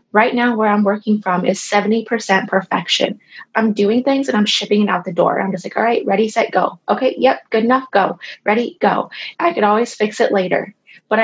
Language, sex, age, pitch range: English, female, 20-39, 190-225 Hz